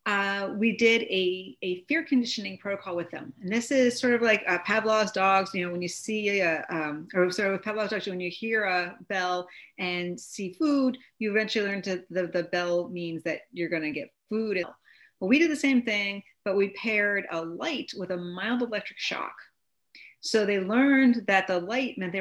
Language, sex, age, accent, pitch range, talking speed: English, female, 40-59, American, 180-230 Hz, 210 wpm